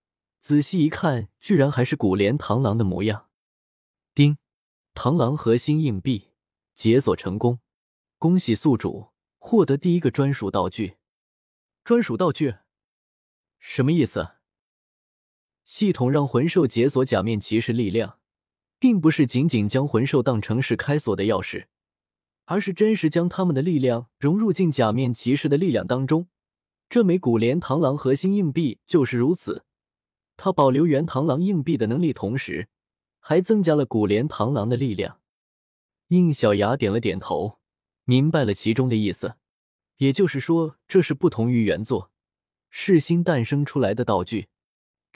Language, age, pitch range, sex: Chinese, 20-39, 115-165 Hz, male